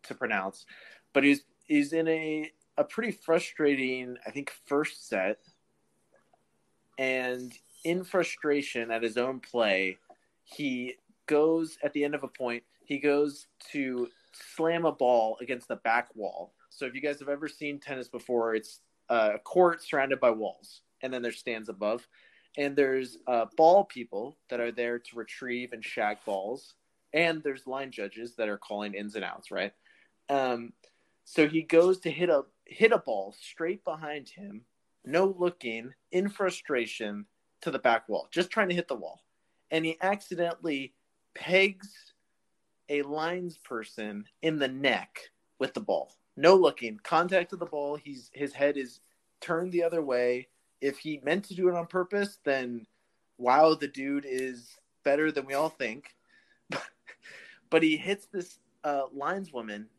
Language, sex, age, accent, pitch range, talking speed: English, male, 20-39, American, 125-165 Hz, 160 wpm